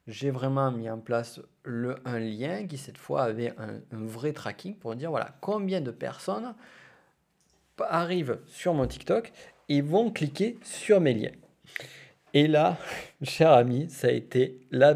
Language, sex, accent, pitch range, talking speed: French, male, French, 115-145 Hz, 160 wpm